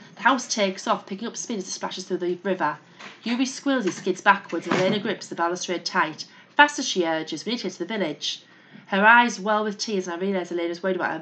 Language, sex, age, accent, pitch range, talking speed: English, female, 30-49, British, 165-200 Hz, 255 wpm